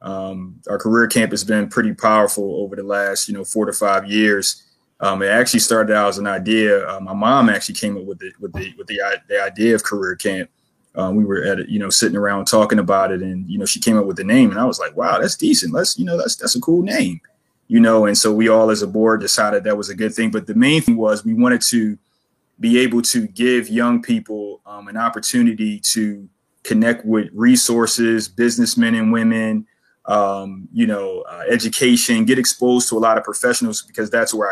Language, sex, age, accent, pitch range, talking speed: English, male, 30-49, American, 105-130 Hz, 230 wpm